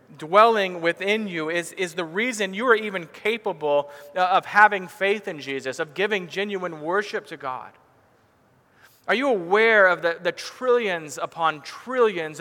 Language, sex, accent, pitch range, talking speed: English, male, American, 165-210 Hz, 150 wpm